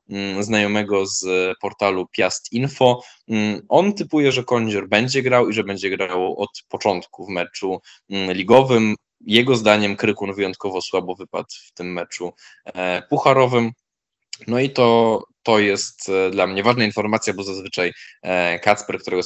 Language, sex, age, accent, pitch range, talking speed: Polish, male, 20-39, native, 95-125 Hz, 135 wpm